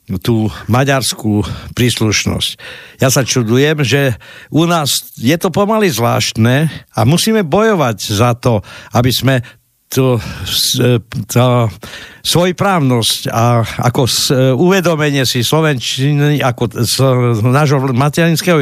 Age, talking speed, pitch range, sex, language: 60-79, 100 wpm, 115-150 Hz, male, Slovak